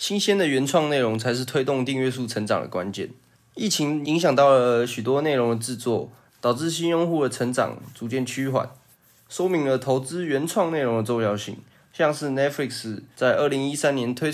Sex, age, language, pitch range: male, 20-39, Chinese, 120-155 Hz